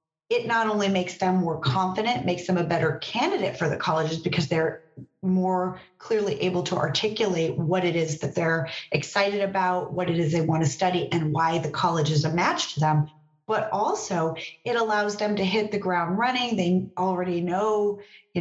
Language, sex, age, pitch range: English, female, 30-49, 165-205 Hz